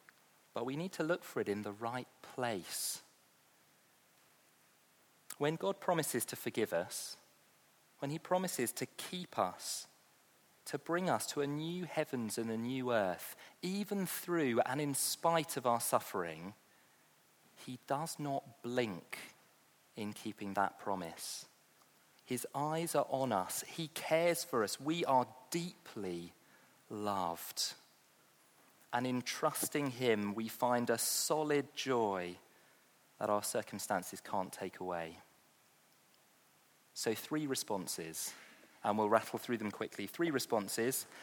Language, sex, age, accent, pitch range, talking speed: English, male, 40-59, British, 115-165 Hz, 130 wpm